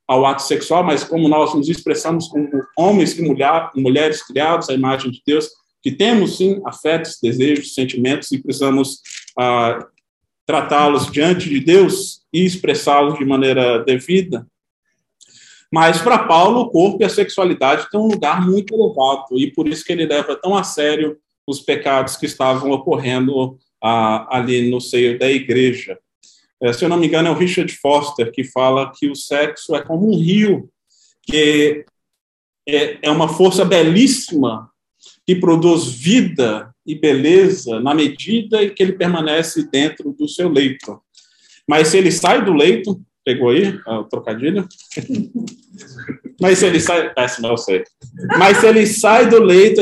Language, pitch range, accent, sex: Portuguese, 135-190 Hz, Brazilian, male